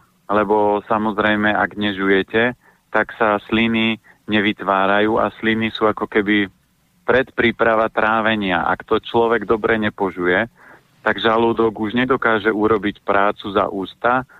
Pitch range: 100-110 Hz